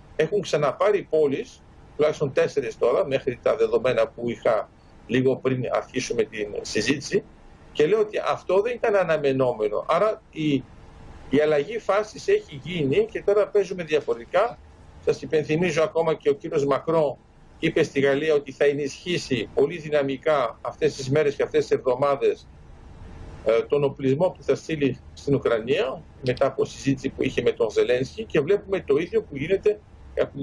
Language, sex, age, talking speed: Greek, male, 50-69, 155 wpm